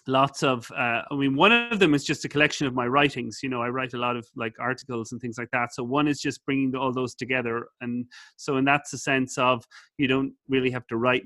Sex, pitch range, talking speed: male, 125-145 Hz, 260 wpm